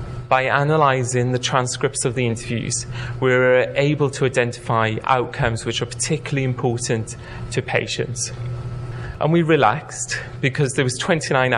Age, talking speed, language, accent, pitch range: 30-49, 135 wpm, English, British, 120-130 Hz